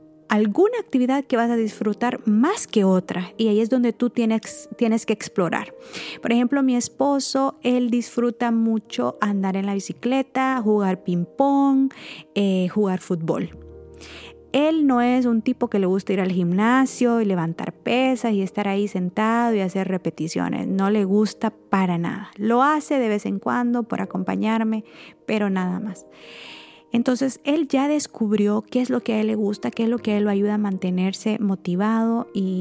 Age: 30-49